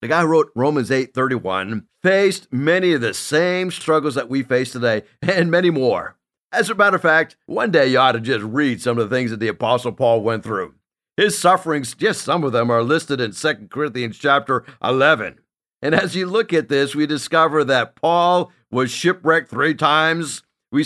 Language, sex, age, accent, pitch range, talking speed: English, male, 50-69, American, 135-180 Hz, 200 wpm